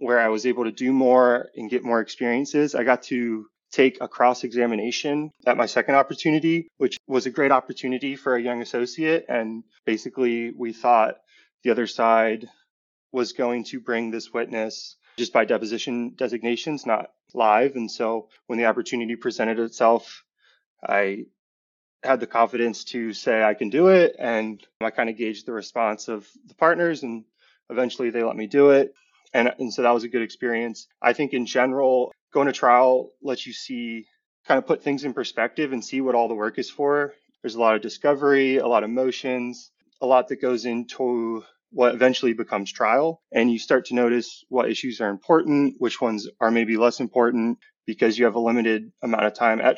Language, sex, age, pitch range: English, male, 20-39, 115-130 Hz